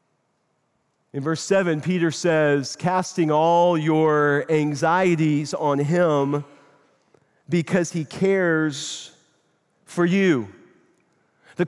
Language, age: English, 40-59